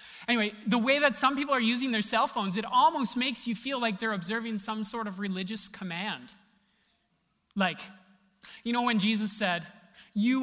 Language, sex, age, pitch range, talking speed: English, male, 30-49, 190-235 Hz, 180 wpm